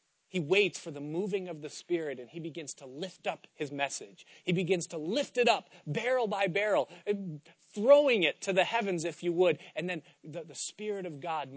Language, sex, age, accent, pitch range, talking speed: English, male, 30-49, American, 150-190 Hz, 205 wpm